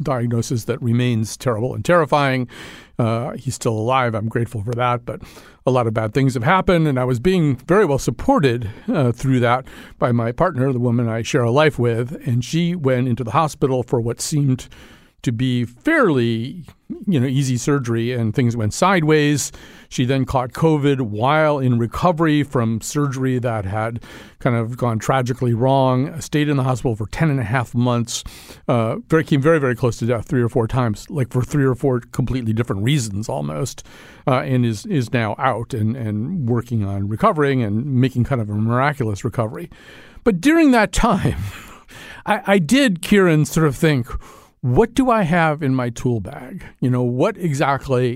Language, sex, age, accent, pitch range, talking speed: English, male, 50-69, American, 120-145 Hz, 185 wpm